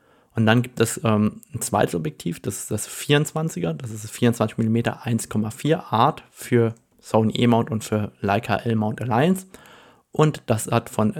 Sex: male